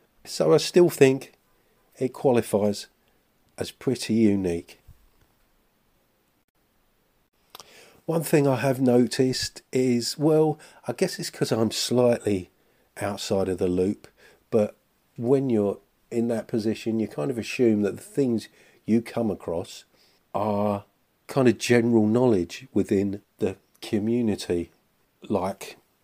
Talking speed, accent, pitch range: 120 wpm, British, 100-125 Hz